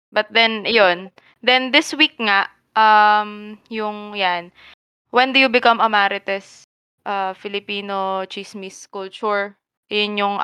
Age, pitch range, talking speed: 20-39, 190-235 Hz, 125 wpm